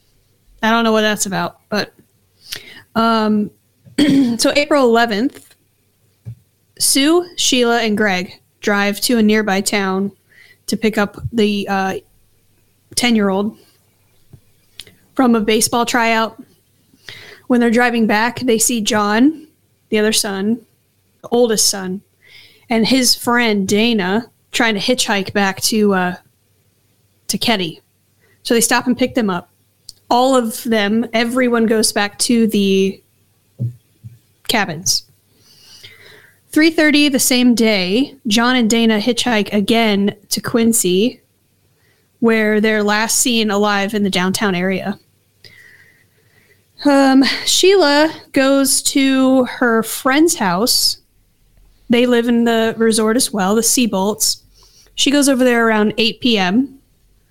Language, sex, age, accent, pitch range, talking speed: English, female, 30-49, American, 195-245 Hz, 120 wpm